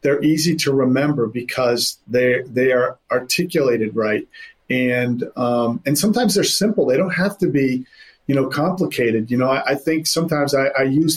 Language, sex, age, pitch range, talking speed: English, male, 40-59, 130-155 Hz, 175 wpm